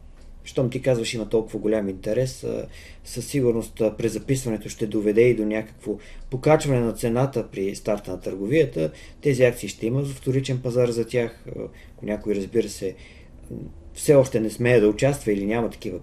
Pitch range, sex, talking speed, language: 100-125 Hz, male, 170 wpm, Bulgarian